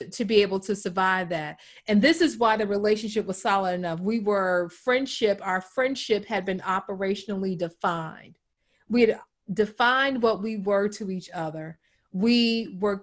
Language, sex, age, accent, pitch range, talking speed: English, female, 40-59, American, 185-225 Hz, 160 wpm